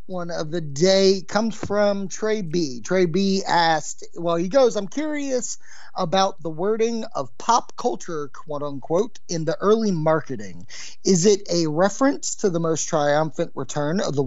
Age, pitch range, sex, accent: 30-49, 140-190 Hz, male, American